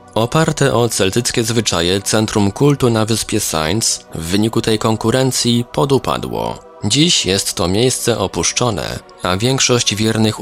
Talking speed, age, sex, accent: 125 wpm, 20-39, male, native